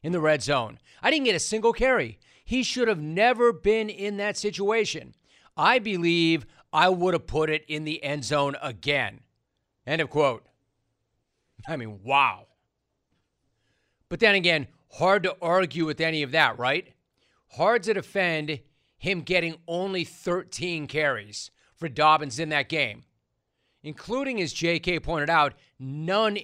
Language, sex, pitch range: English, male, 135-185 Hz